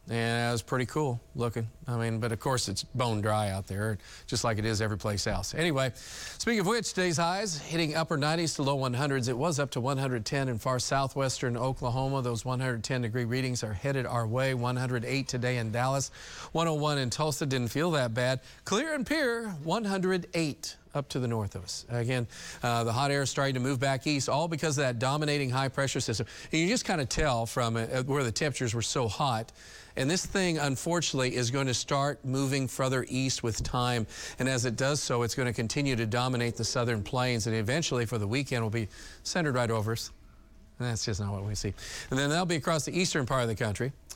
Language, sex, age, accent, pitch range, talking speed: English, male, 40-59, American, 120-145 Hz, 220 wpm